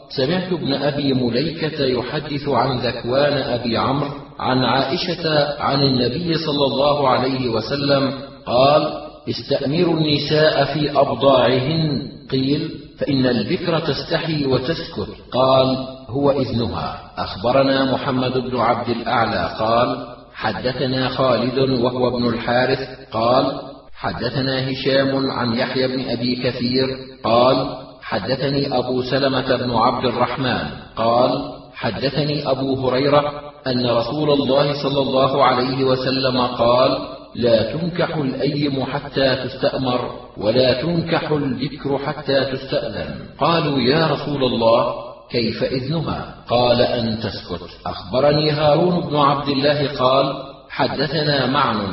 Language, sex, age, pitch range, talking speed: Arabic, male, 40-59, 125-145 Hz, 110 wpm